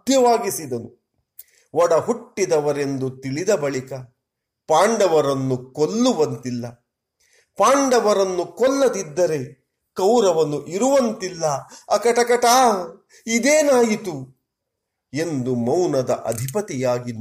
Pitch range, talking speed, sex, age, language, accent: 110-180 Hz, 50 wpm, male, 40-59, Kannada, native